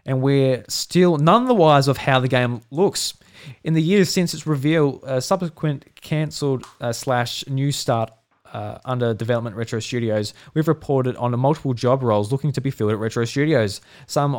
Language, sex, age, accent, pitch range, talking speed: English, male, 20-39, Australian, 115-145 Hz, 185 wpm